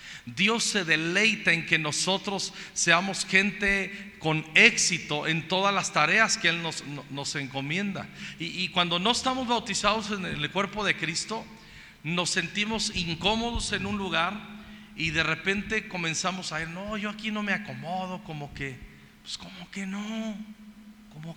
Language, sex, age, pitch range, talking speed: Spanish, male, 40-59, 155-200 Hz, 155 wpm